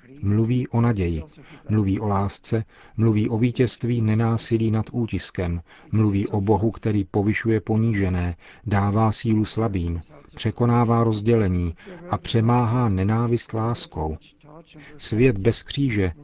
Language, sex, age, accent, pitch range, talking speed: Czech, male, 40-59, native, 100-115 Hz, 110 wpm